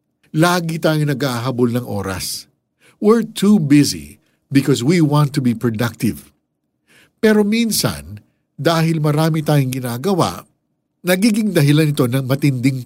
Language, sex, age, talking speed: Filipino, male, 50-69, 115 wpm